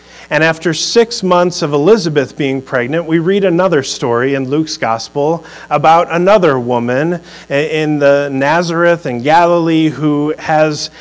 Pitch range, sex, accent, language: 95-150 Hz, male, American, English